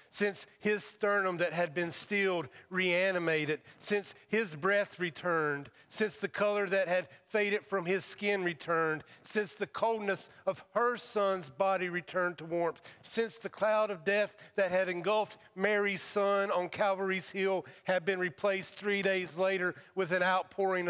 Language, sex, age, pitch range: English, male, 50-69, 160-200 Hz